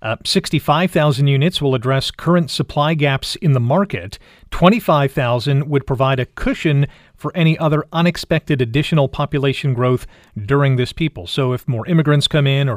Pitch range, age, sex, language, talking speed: 135-165 Hz, 40-59, male, English, 155 wpm